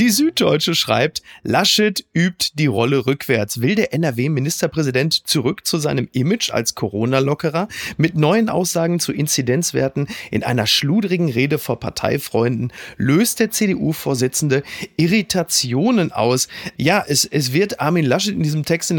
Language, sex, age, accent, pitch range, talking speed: German, male, 30-49, German, 135-180 Hz, 140 wpm